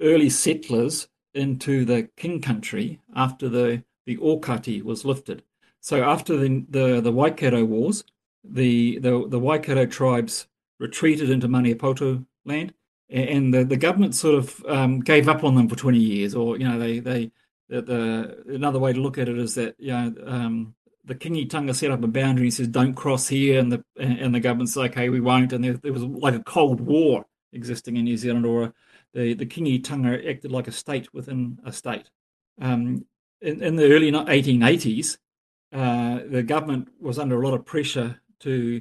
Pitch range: 120-140 Hz